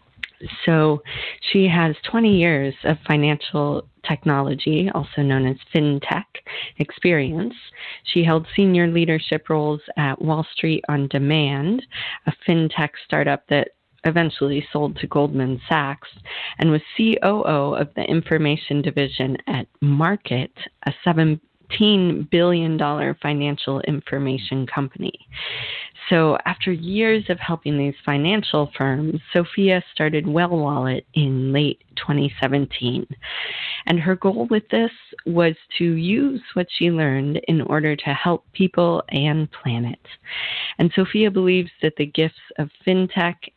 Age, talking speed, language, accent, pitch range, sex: 30-49, 125 wpm, English, American, 145-175 Hz, female